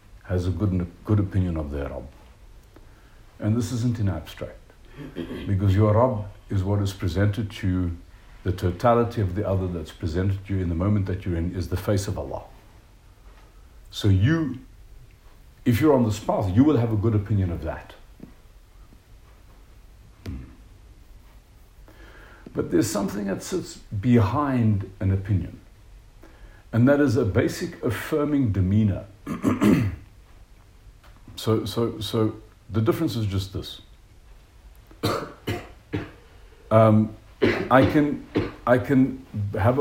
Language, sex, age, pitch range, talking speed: English, male, 60-79, 95-115 Hz, 130 wpm